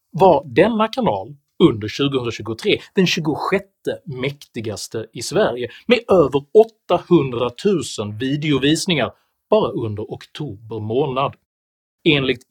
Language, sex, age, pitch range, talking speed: Swedish, male, 40-59, 125-180 Hz, 95 wpm